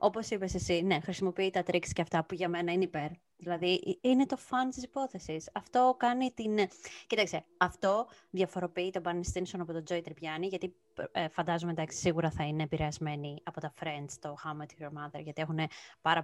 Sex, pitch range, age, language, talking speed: female, 160-220 Hz, 20-39, Greek, 190 wpm